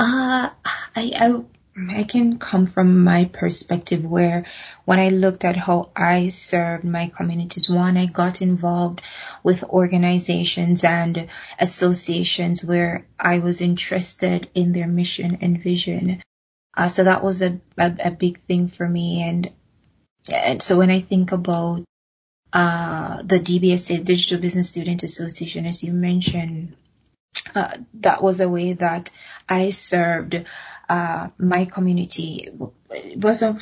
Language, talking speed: English, 135 wpm